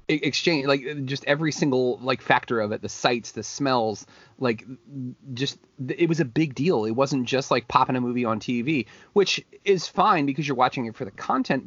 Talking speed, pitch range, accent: 200 wpm, 115-145 Hz, American